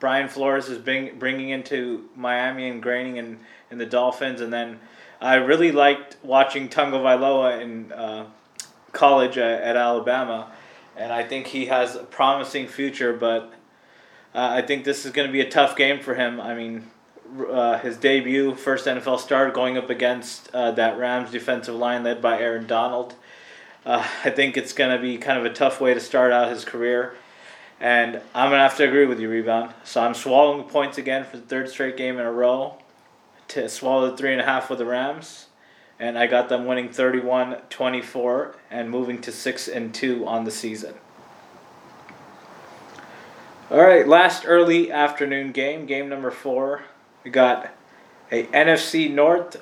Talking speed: 180 wpm